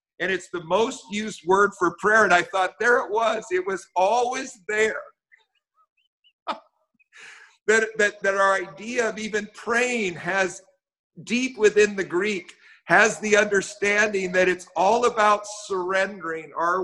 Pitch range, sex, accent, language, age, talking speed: 160-215 Hz, male, American, English, 50-69, 145 wpm